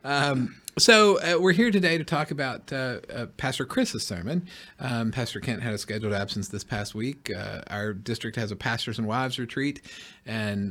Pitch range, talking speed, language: 105-130 Hz, 190 wpm, English